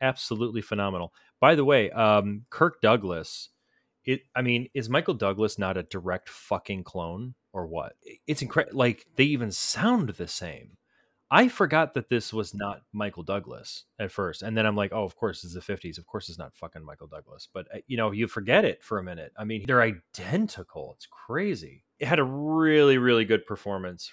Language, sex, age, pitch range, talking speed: English, male, 30-49, 95-115 Hz, 195 wpm